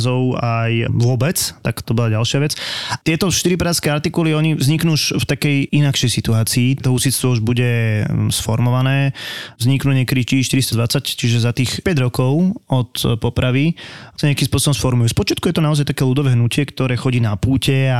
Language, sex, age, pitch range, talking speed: Slovak, male, 20-39, 115-140 Hz, 155 wpm